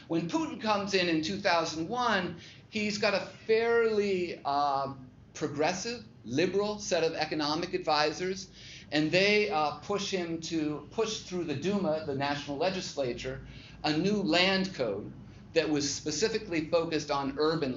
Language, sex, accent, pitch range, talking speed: English, male, American, 135-175 Hz, 135 wpm